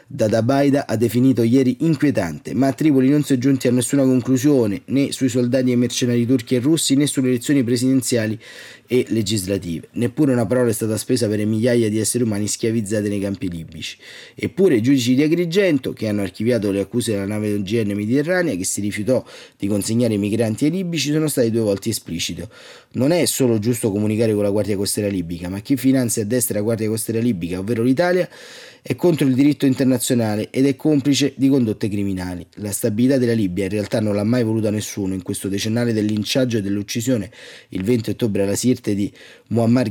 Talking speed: 200 wpm